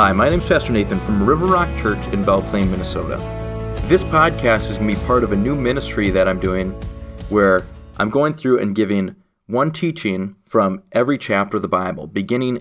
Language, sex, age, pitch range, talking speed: English, male, 30-49, 95-125 Hz, 205 wpm